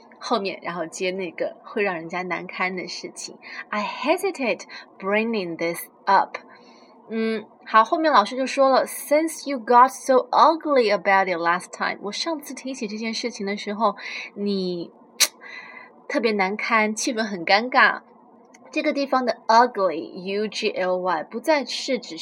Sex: female